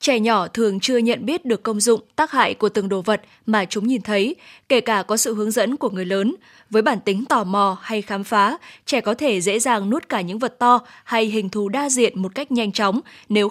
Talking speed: 250 wpm